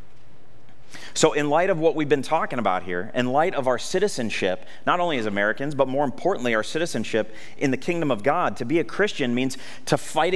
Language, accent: English, American